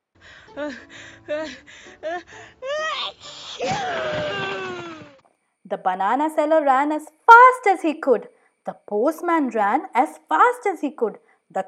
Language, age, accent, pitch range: English, 20-39, Indian, 215-330 Hz